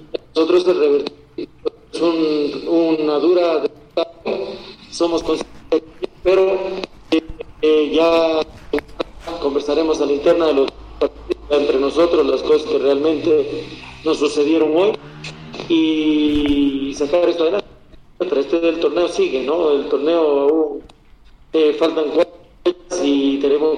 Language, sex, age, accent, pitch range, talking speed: Spanish, male, 40-59, Mexican, 145-175 Hz, 105 wpm